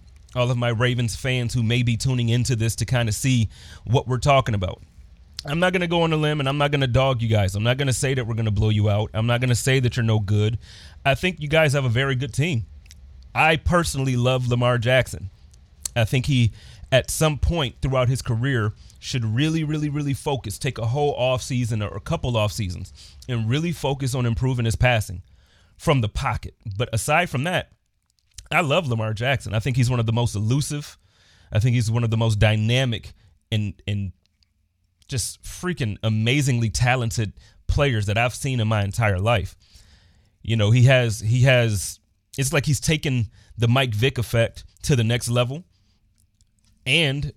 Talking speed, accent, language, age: 200 wpm, American, English, 30-49